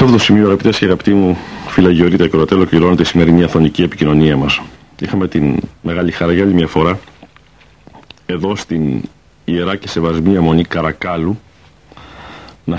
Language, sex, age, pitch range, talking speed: Greek, male, 50-69, 80-95 Hz, 145 wpm